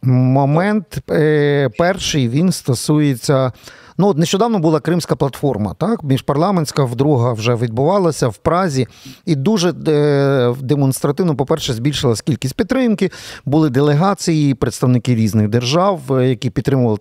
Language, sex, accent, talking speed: Ukrainian, male, native, 110 wpm